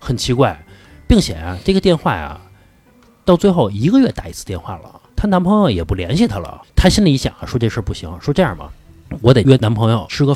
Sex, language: male, Chinese